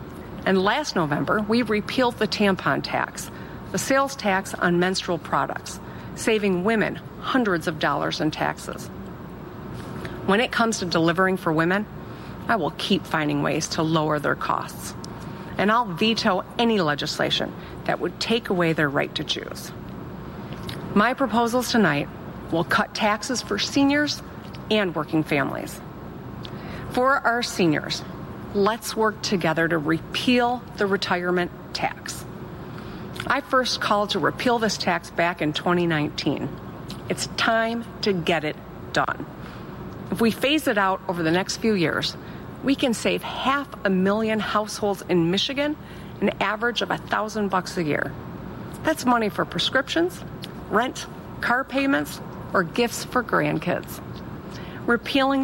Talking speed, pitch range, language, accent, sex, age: 135 wpm, 175-235 Hz, English, American, female, 40-59